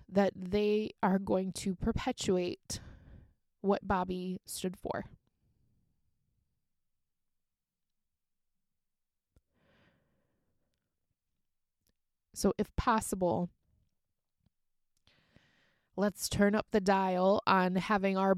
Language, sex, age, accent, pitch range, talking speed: English, female, 20-39, American, 180-210 Hz, 70 wpm